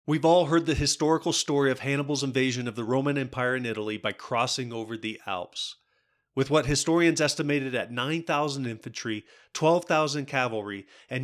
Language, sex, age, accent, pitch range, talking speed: English, male, 30-49, American, 115-150 Hz, 160 wpm